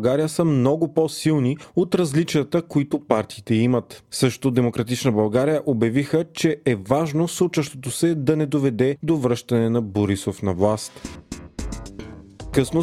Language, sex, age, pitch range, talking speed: Bulgarian, male, 30-49, 120-155 Hz, 130 wpm